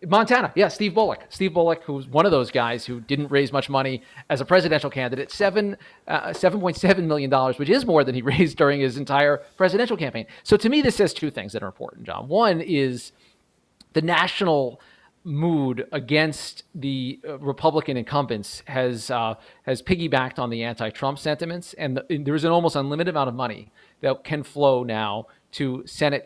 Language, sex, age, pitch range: English, male, 40-59, 125-170 Hz